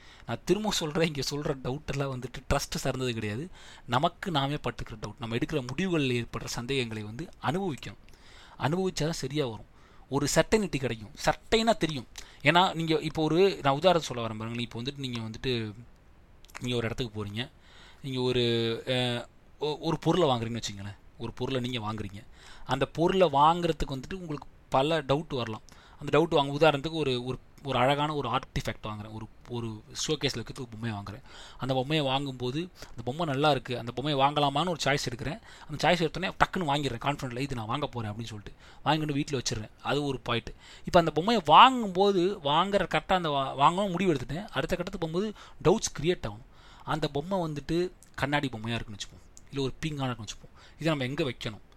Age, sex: 30-49, male